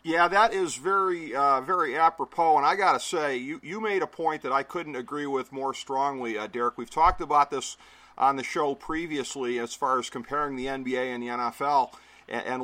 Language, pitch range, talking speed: English, 130-150 Hz, 210 wpm